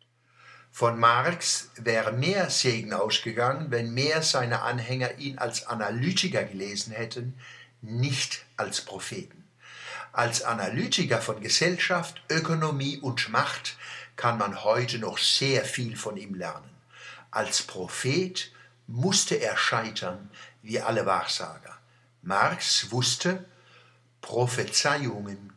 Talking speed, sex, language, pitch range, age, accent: 105 wpm, male, German, 115-135 Hz, 60-79, German